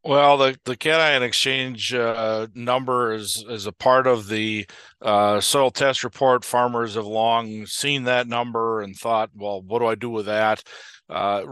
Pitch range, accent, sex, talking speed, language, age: 105-120 Hz, American, male, 170 wpm, English, 50-69